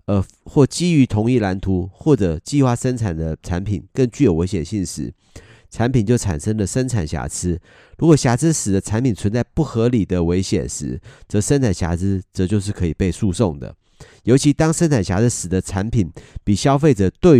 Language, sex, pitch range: Chinese, male, 95-130 Hz